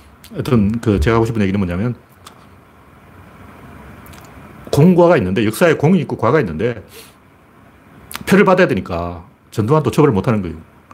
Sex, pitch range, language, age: male, 90-140 Hz, Korean, 40-59